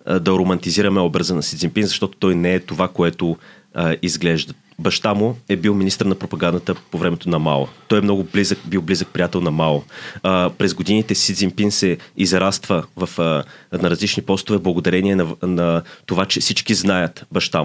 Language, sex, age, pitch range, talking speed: Bulgarian, male, 30-49, 90-115 Hz, 170 wpm